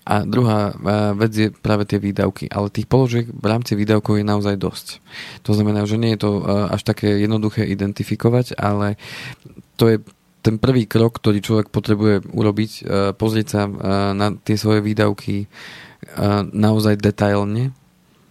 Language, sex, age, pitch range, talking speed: Slovak, male, 20-39, 100-110 Hz, 145 wpm